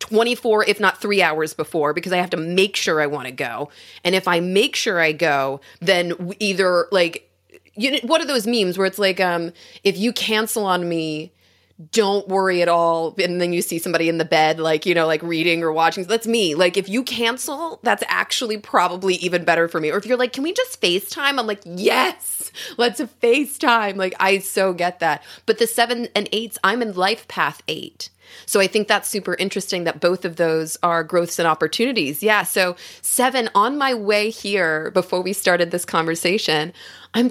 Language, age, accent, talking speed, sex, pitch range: English, 30-49, American, 210 wpm, female, 170-225 Hz